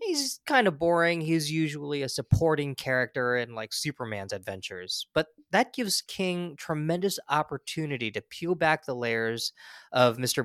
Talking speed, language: 150 wpm, English